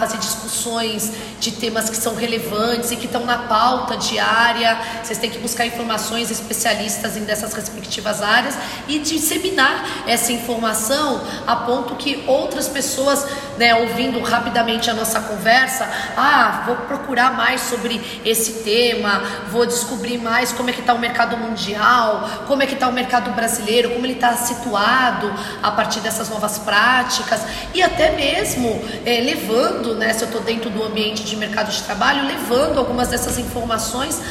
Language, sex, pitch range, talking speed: Portuguese, female, 205-240 Hz, 160 wpm